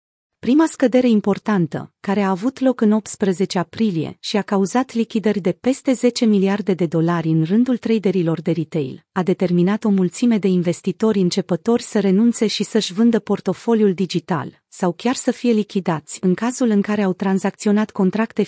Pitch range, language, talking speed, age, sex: 180-225 Hz, Romanian, 165 wpm, 30-49, female